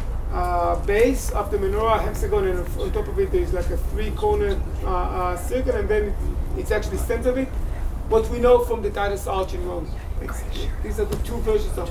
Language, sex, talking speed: English, male, 210 wpm